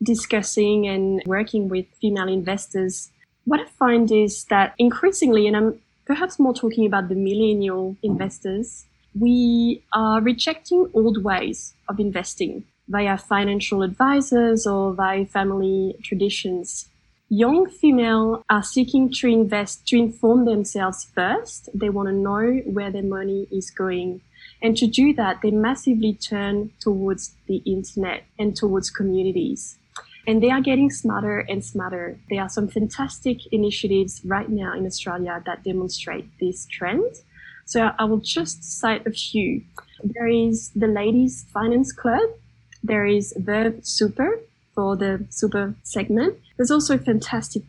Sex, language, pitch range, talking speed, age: female, English, 195-235 Hz, 140 wpm, 20-39